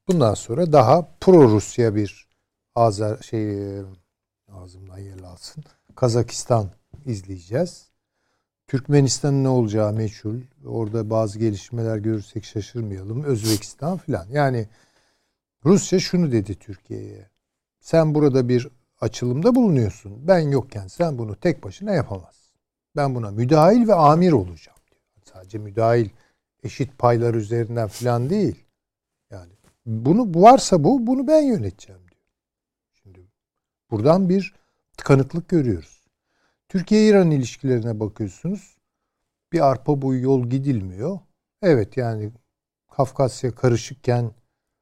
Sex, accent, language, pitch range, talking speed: male, native, Turkish, 105-145 Hz, 110 wpm